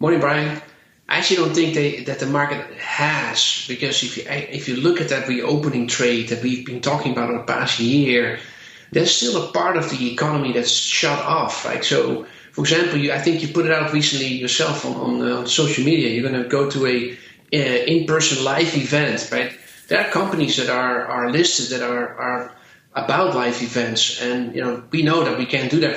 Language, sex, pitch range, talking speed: English, male, 125-150 Hz, 210 wpm